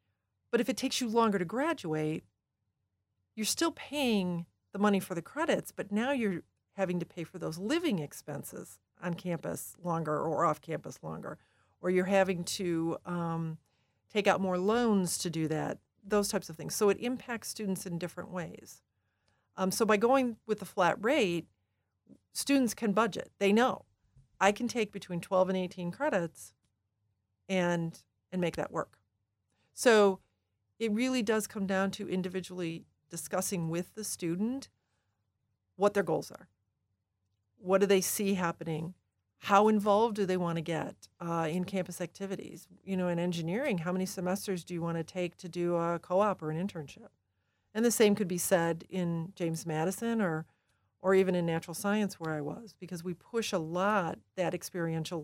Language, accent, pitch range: English, American, 160-200 Hz